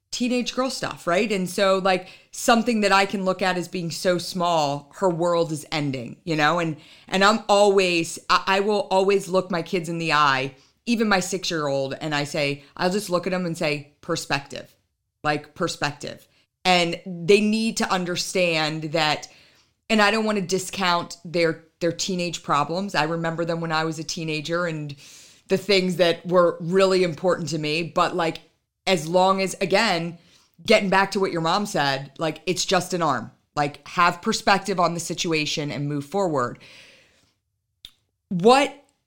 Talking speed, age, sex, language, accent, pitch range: 175 wpm, 40-59, female, English, American, 155-195 Hz